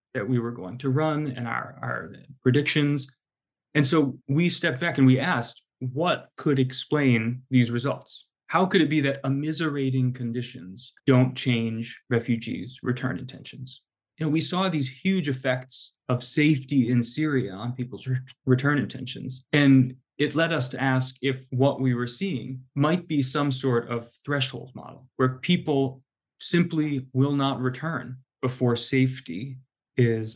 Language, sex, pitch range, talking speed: English, male, 125-140 Hz, 150 wpm